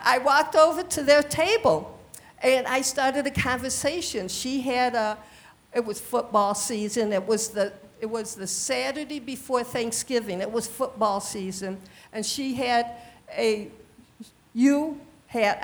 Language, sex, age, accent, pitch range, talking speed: English, female, 50-69, American, 230-290 Hz, 140 wpm